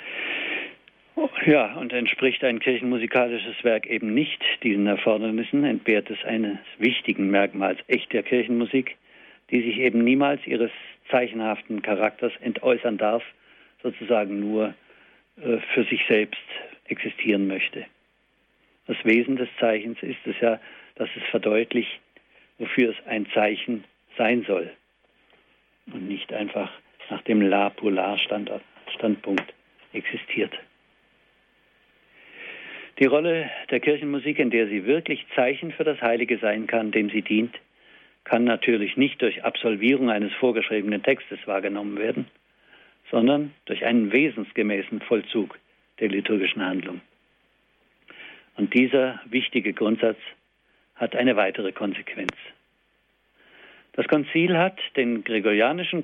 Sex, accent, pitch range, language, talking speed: male, German, 110-130 Hz, German, 110 wpm